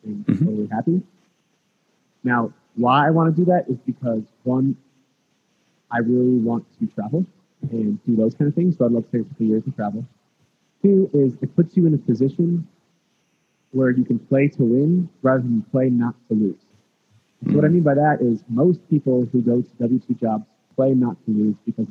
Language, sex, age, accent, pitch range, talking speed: English, male, 30-49, American, 120-155 Hz, 195 wpm